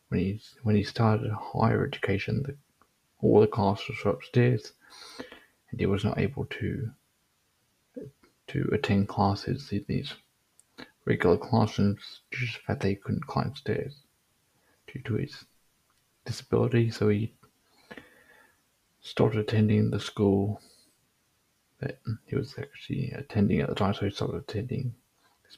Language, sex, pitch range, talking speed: English, male, 100-120 Hz, 135 wpm